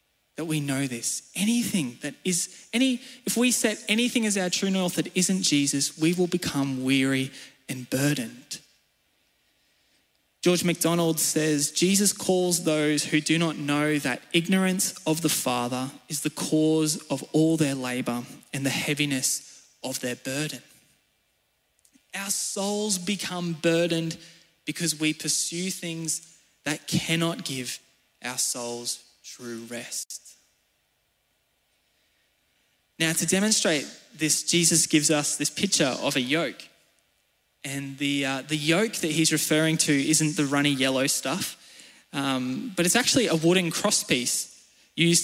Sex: male